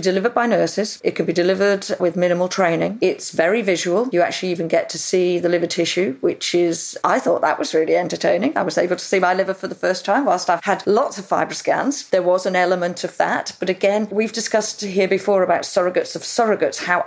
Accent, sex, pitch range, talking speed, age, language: British, female, 175-205 Hz, 230 wpm, 40-59, English